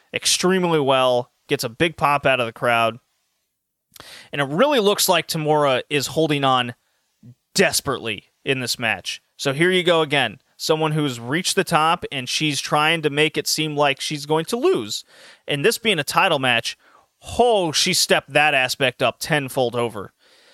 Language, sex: English, male